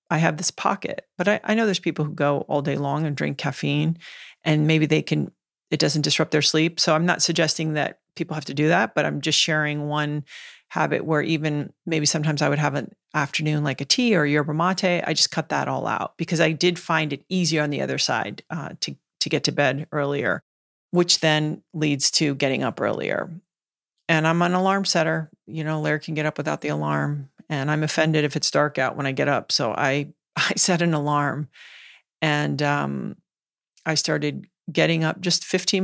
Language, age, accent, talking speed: English, 40-59, American, 215 wpm